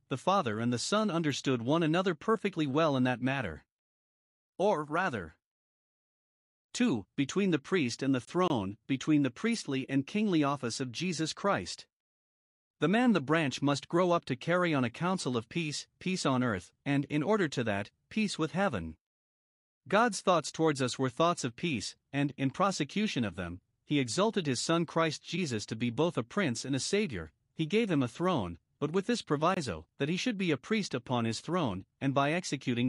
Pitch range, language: 130-180 Hz, English